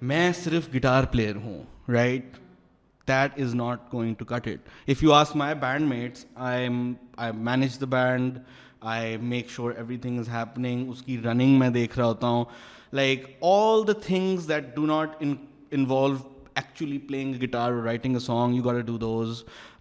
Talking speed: 175 wpm